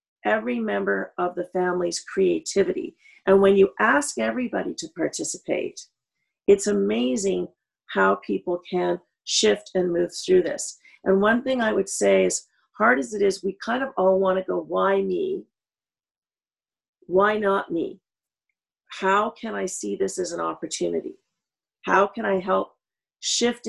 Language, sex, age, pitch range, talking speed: English, female, 50-69, 180-210 Hz, 150 wpm